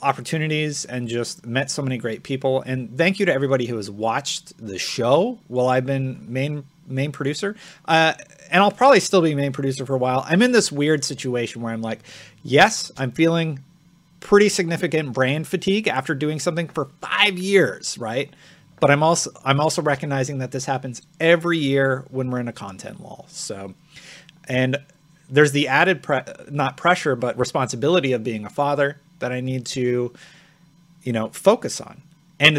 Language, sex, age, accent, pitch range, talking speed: English, male, 30-49, American, 125-165 Hz, 180 wpm